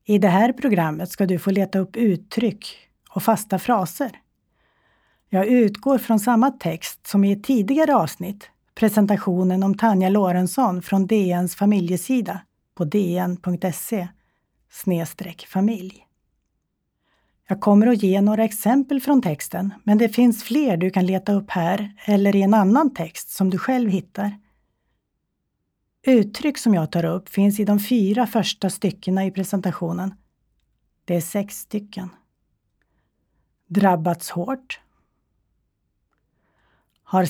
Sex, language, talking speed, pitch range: female, Swedish, 125 wpm, 180-225 Hz